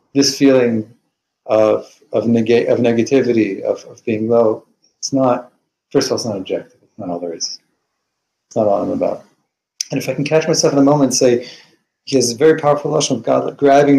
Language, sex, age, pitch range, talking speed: English, male, 40-59, 115-145 Hz, 210 wpm